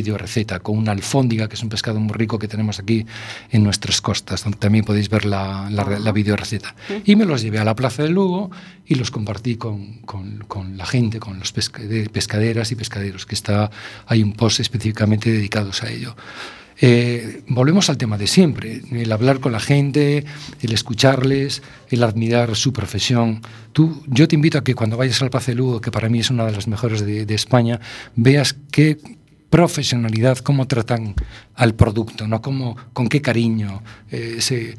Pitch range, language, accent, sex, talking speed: 110-130 Hz, Spanish, Spanish, male, 195 wpm